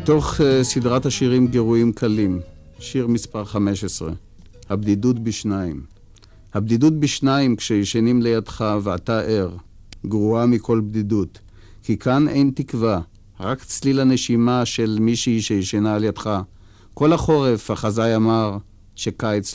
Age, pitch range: 50-69, 100-120 Hz